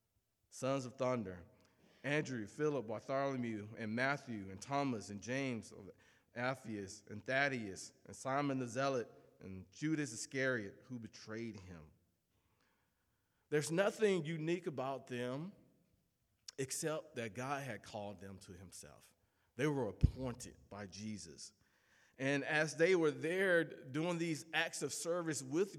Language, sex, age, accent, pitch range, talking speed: English, male, 40-59, American, 110-165 Hz, 130 wpm